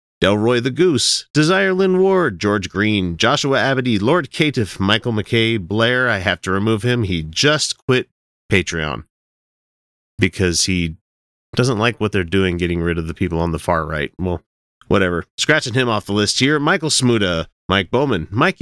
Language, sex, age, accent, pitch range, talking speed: English, male, 30-49, American, 90-135 Hz, 170 wpm